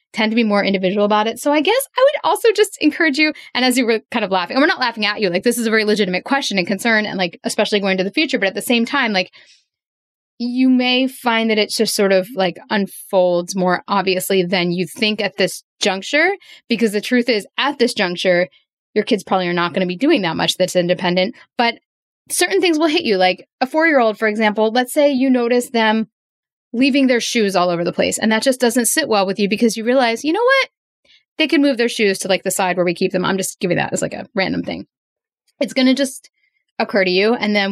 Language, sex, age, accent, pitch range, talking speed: English, female, 10-29, American, 195-260 Hz, 250 wpm